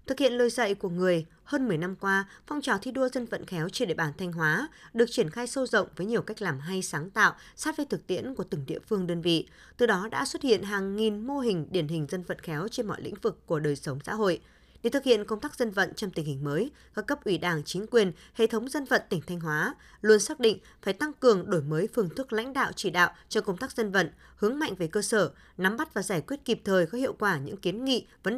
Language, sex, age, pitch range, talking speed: Vietnamese, female, 20-39, 175-235 Hz, 275 wpm